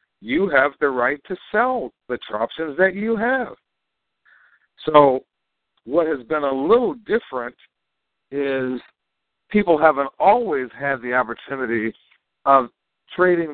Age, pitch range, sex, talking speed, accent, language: 60-79, 120-170 Hz, male, 120 wpm, American, English